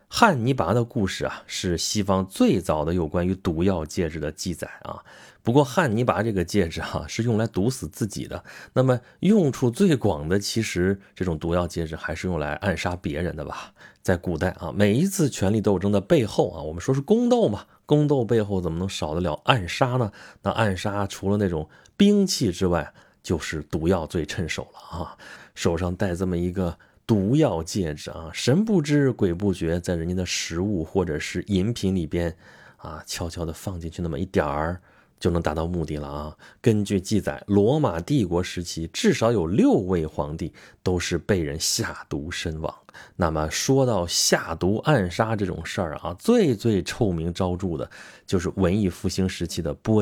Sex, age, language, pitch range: male, 30-49, Chinese, 85-110 Hz